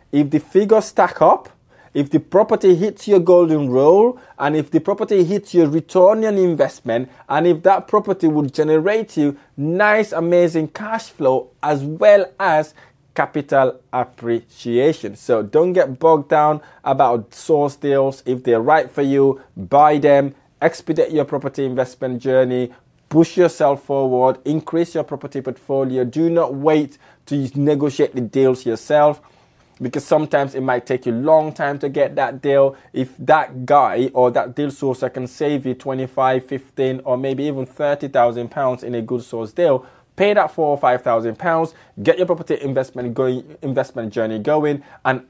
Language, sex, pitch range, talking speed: English, male, 125-155 Hz, 165 wpm